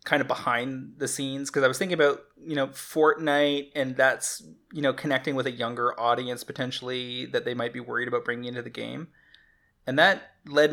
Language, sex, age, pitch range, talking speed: English, male, 20-39, 120-135 Hz, 200 wpm